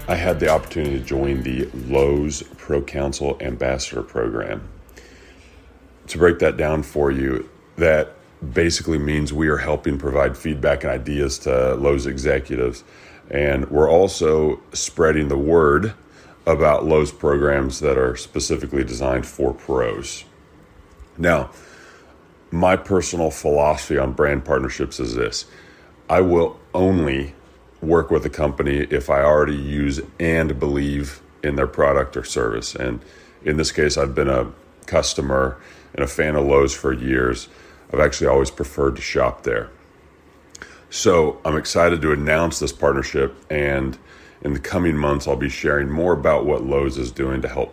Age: 30-49